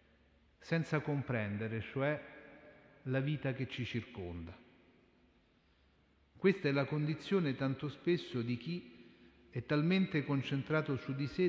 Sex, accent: male, native